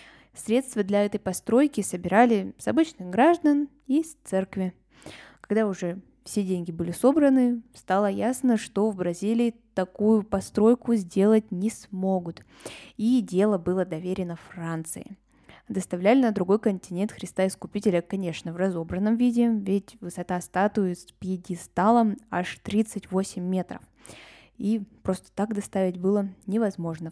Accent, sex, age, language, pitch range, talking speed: native, female, 20-39, Russian, 180-220 Hz, 125 wpm